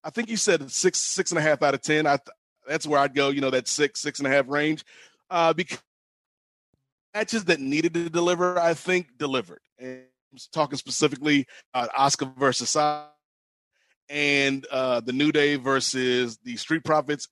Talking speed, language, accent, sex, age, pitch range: 190 wpm, English, American, male, 30-49, 140-170 Hz